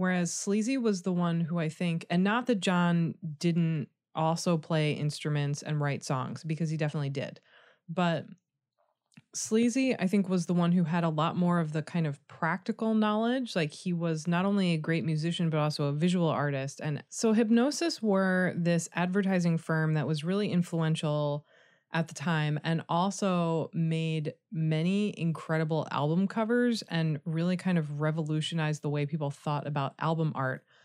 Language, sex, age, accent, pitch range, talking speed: English, female, 20-39, American, 155-185 Hz, 170 wpm